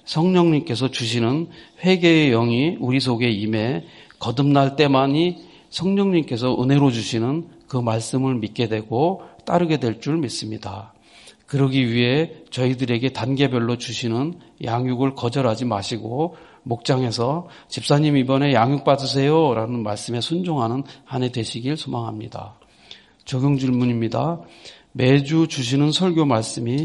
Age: 40-59